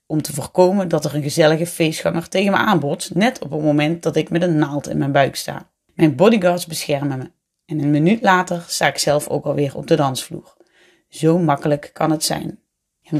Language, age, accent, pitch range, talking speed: Dutch, 30-49, Dutch, 150-175 Hz, 210 wpm